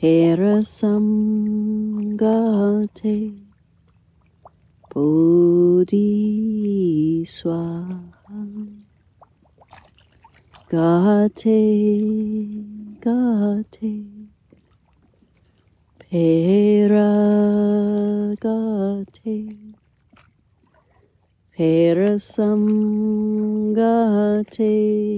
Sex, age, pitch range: female, 30-49, 170-210 Hz